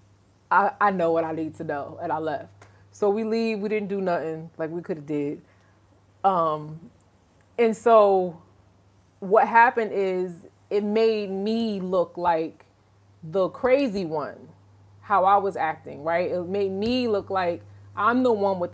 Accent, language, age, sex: American, English, 20-39, female